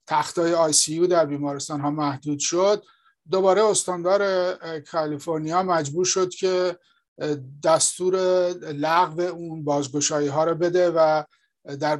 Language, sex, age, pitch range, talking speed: English, male, 50-69, 145-175 Hz, 120 wpm